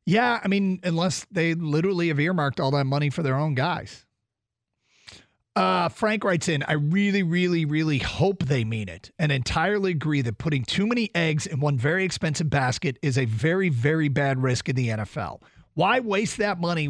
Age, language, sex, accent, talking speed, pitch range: 40-59, English, male, American, 190 wpm, 130-170 Hz